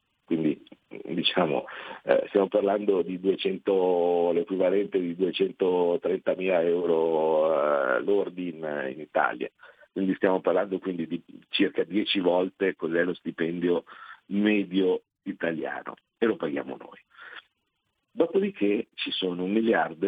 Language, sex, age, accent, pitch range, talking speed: Italian, male, 50-69, native, 90-120 Hz, 110 wpm